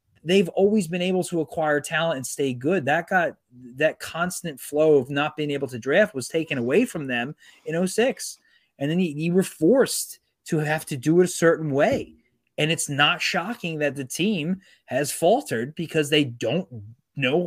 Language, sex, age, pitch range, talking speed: English, male, 30-49, 145-210 Hz, 185 wpm